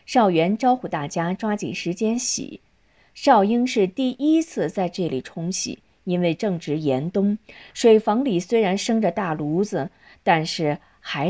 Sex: female